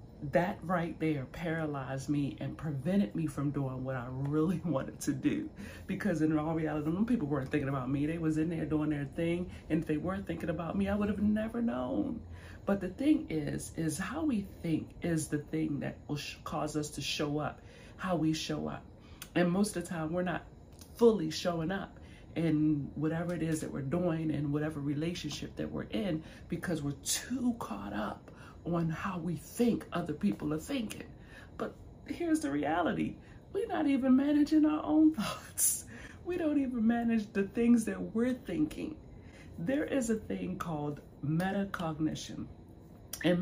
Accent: American